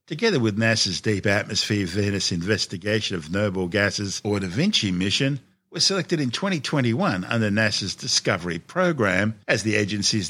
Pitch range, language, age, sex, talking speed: 100-140 Hz, English, 60-79, male, 145 wpm